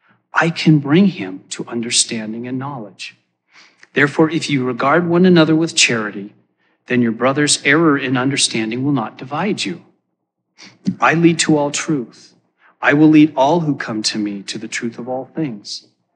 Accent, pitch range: American, 115-140 Hz